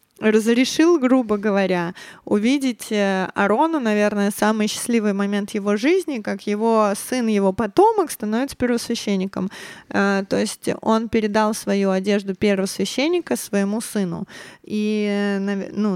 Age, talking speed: 20-39, 110 wpm